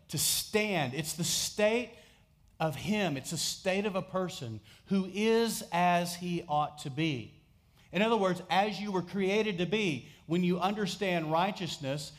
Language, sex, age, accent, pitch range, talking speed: English, male, 40-59, American, 115-170 Hz, 160 wpm